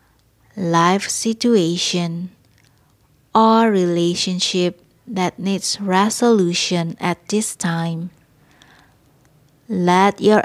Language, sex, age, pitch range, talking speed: English, female, 20-39, 170-205 Hz, 70 wpm